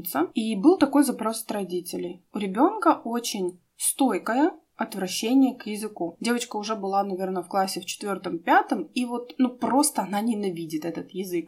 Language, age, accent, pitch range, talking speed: Russian, 20-39, native, 195-270 Hz, 155 wpm